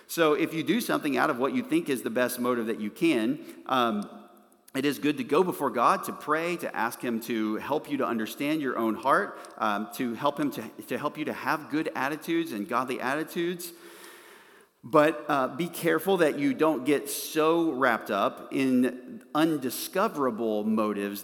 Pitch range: 105-150 Hz